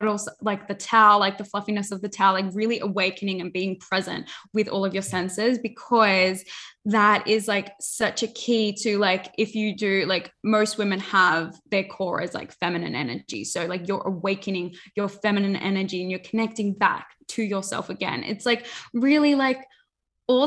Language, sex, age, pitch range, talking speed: English, female, 10-29, 190-220 Hz, 185 wpm